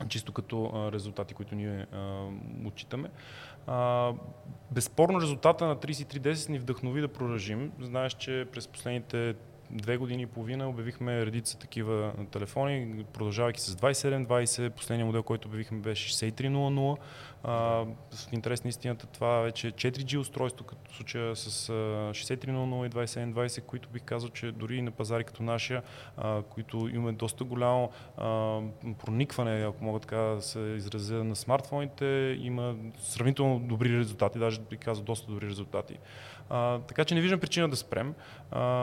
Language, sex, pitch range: Bulgarian, male, 110-130 Hz